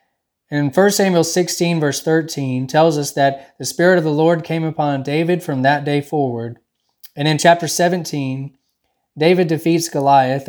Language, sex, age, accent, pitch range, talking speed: English, male, 20-39, American, 130-160 Hz, 160 wpm